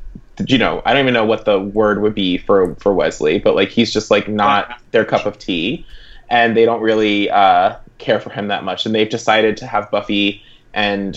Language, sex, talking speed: English, male, 220 wpm